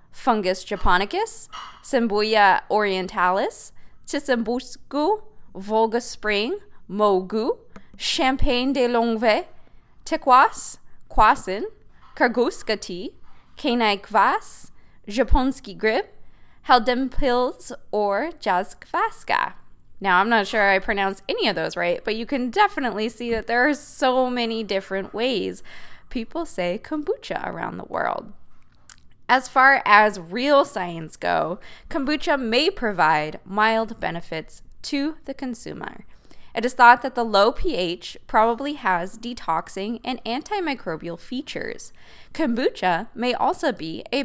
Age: 20-39